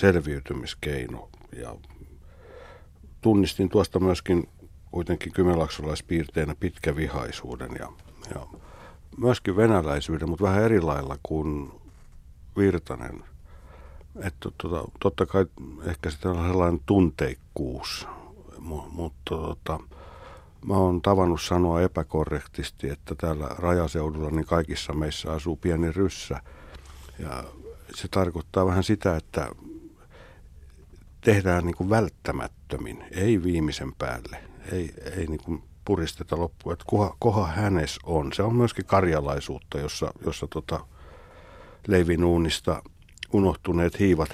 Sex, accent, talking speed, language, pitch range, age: male, native, 100 wpm, Finnish, 75-90 Hz, 60-79